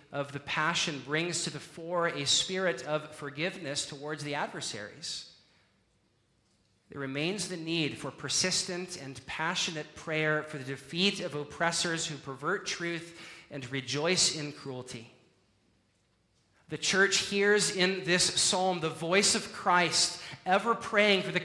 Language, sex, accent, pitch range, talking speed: English, male, American, 140-175 Hz, 135 wpm